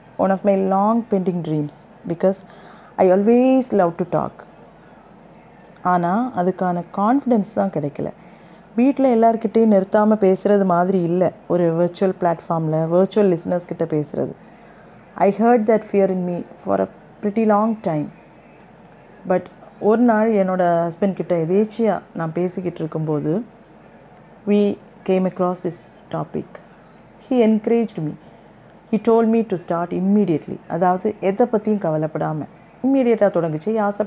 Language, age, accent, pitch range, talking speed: Tamil, 30-49, native, 175-220 Hz, 130 wpm